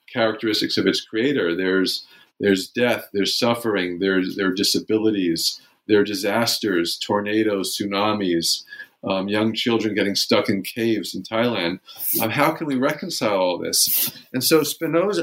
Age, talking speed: 50-69, 140 wpm